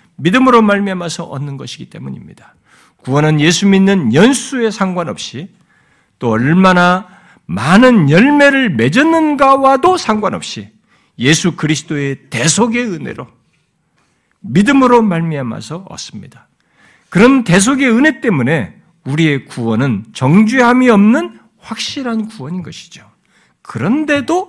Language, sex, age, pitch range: Korean, male, 60-79, 150-235 Hz